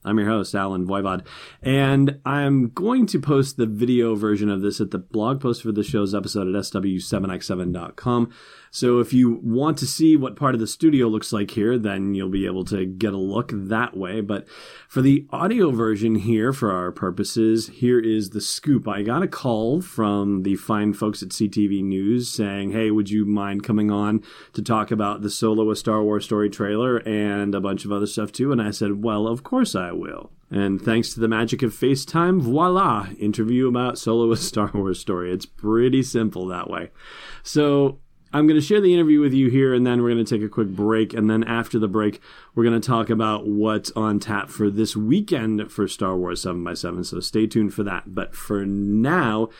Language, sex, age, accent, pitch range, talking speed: English, male, 30-49, American, 100-125 Hz, 210 wpm